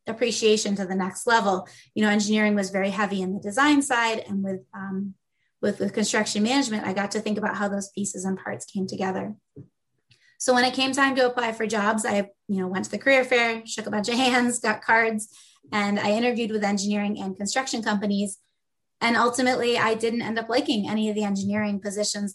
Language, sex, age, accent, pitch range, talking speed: English, female, 20-39, American, 200-245 Hz, 210 wpm